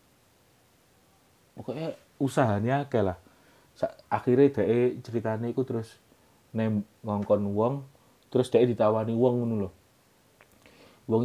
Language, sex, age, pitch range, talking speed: Indonesian, male, 30-49, 95-135 Hz, 85 wpm